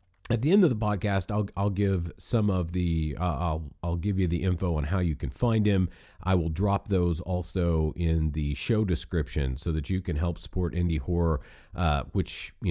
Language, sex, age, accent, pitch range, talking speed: English, male, 40-59, American, 80-105 Hz, 210 wpm